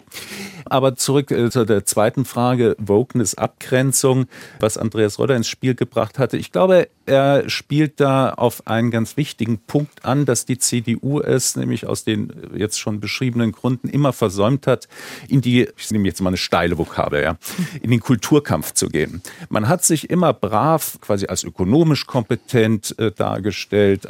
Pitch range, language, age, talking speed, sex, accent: 105-135 Hz, German, 50-69, 165 wpm, male, German